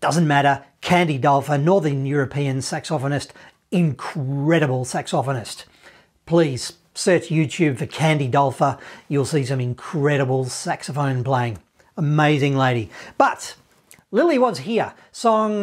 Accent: Australian